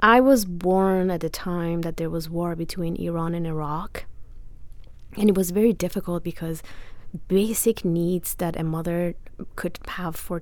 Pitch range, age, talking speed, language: 165-190 Hz, 20-39, 160 wpm, English